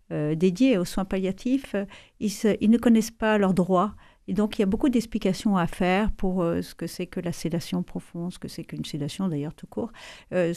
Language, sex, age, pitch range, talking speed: French, female, 50-69, 175-220 Hz, 235 wpm